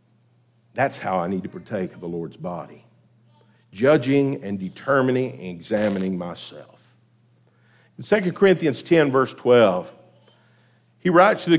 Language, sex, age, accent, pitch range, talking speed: English, male, 50-69, American, 120-185 Hz, 135 wpm